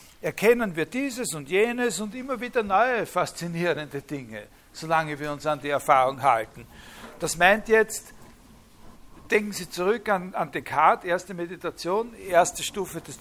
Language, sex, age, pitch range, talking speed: German, male, 60-79, 150-225 Hz, 145 wpm